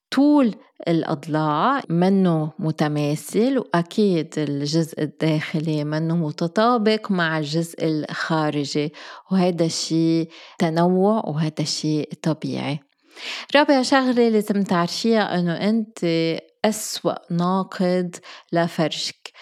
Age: 20-39